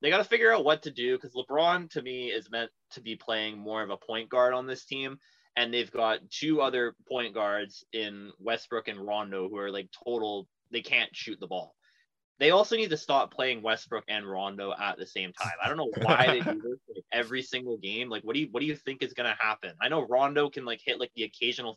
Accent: American